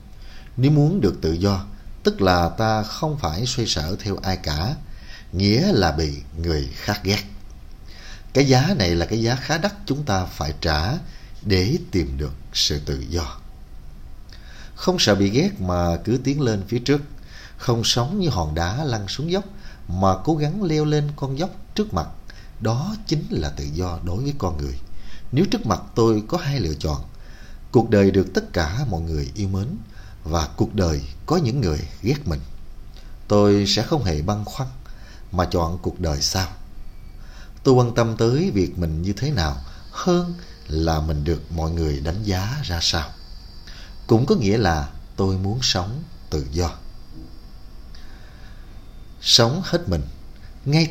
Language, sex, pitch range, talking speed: Vietnamese, male, 80-115 Hz, 170 wpm